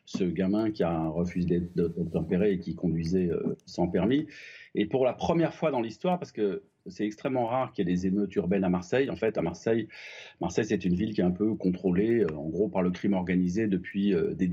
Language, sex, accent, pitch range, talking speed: French, male, French, 95-140 Hz, 220 wpm